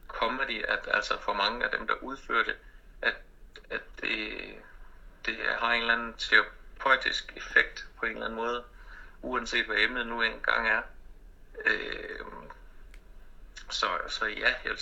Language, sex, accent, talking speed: Danish, male, native, 155 wpm